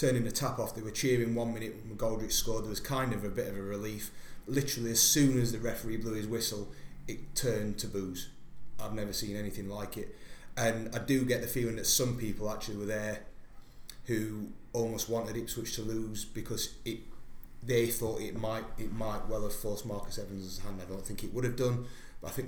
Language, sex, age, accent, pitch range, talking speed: English, male, 30-49, British, 105-120 Hz, 220 wpm